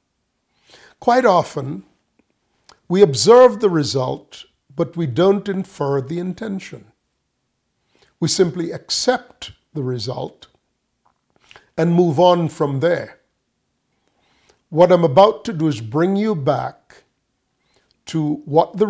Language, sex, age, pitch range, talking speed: English, male, 50-69, 135-180 Hz, 110 wpm